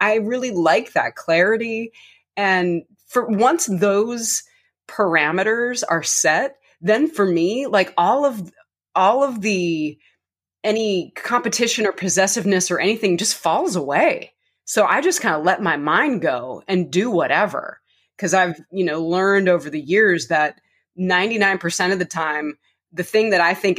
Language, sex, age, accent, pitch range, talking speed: English, female, 20-39, American, 170-205 Hz, 150 wpm